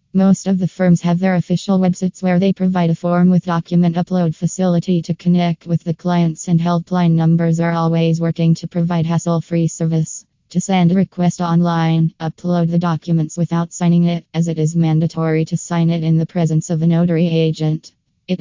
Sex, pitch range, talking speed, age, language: female, 165-180 Hz, 190 wpm, 20-39, English